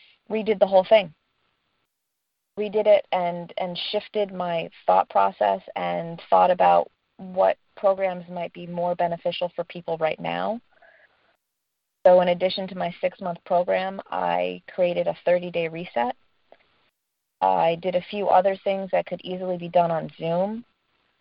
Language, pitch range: English, 175-190 Hz